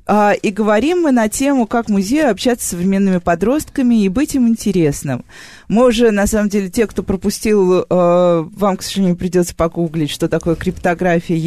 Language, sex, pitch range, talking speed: Russian, female, 165-215 Hz, 160 wpm